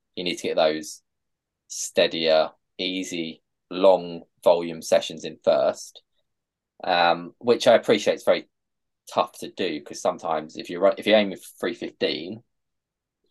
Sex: male